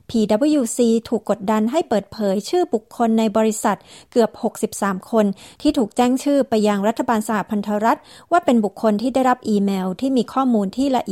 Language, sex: Thai, female